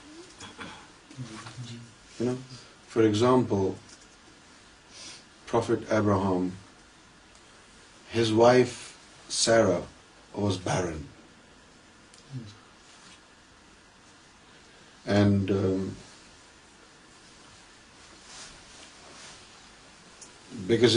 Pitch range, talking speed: 100-125 Hz, 40 wpm